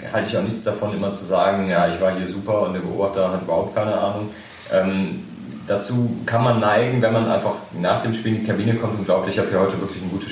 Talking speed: 255 wpm